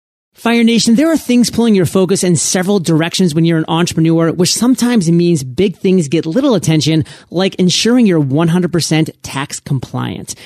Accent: American